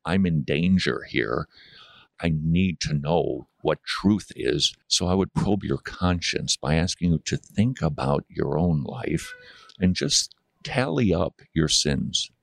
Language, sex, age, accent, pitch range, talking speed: English, male, 50-69, American, 75-95 Hz, 155 wpm